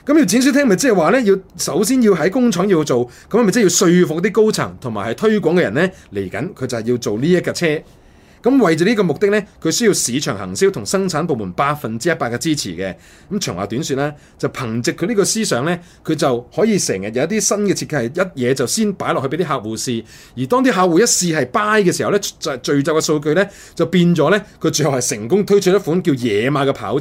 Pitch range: 135-195 Hz